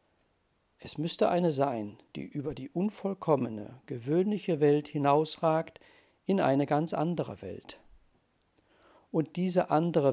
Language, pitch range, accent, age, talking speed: German, 115-160 Hz, German, 50-69, 115 wpm